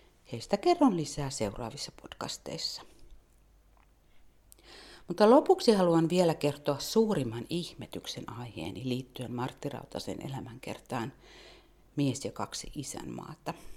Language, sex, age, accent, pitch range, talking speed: Finnish, female, 50-69, native, 130-195 Hz, 90 wpm